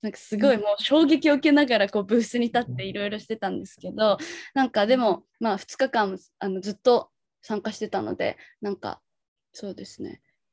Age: 20-39